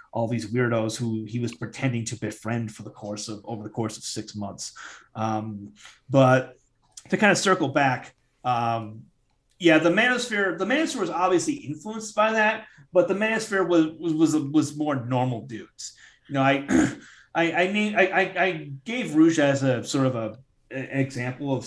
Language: English